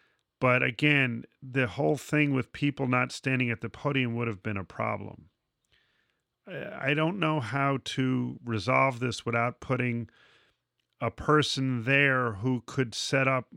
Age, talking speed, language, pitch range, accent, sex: 40-59, 145 wpm, English, 110-130 Hz, American, male